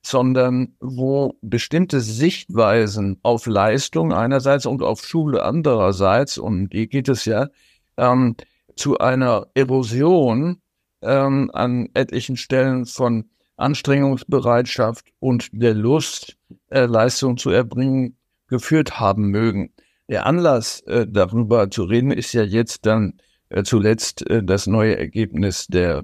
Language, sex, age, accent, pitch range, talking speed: German, male, 60-79, German, 105-130 Hz, 120 wpm